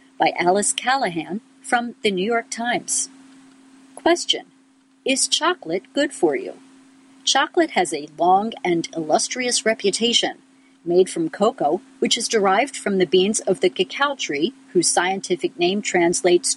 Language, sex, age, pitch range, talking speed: English, female, 50-69, 195-285 Hz, 140 wpm